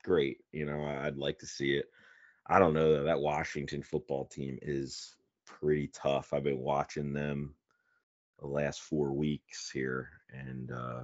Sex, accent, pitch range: male, American, 70-80 Hz